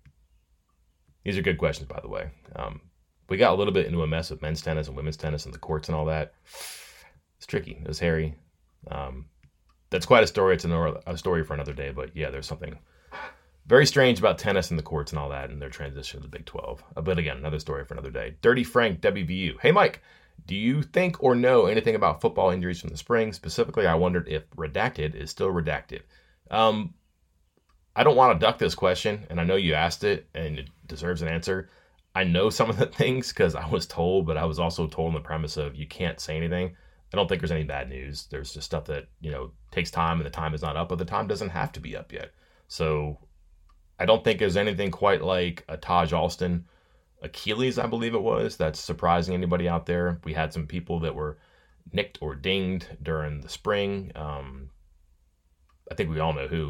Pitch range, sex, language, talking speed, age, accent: 75-85 Hz, male, English, 225 wpm, 30-49, American